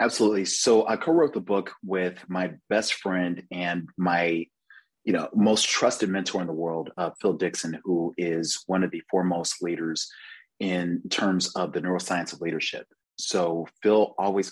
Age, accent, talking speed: 30-49, American, 165 wpm